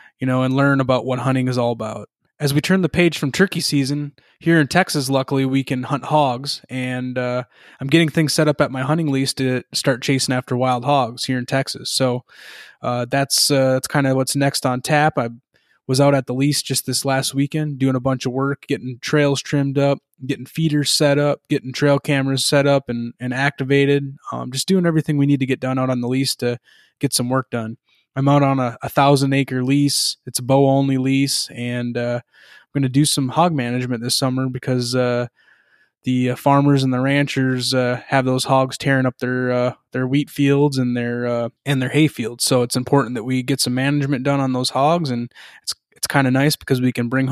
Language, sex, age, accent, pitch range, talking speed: English, male, 20-39, American, 125-140 Hz, 225 wpm